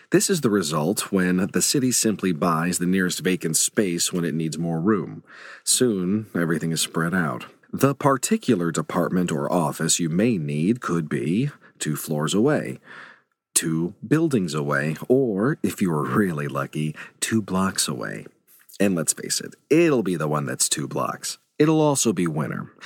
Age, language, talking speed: 40-59, English, 165 wpm